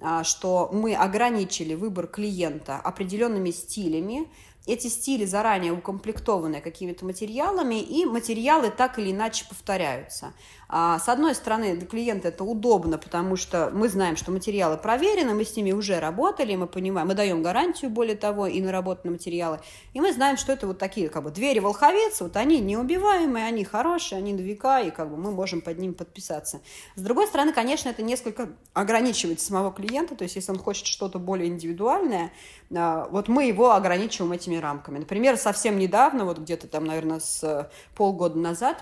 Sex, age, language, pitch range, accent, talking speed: female, 30-49, Russian, 170-230 Hz, native, 160 wpm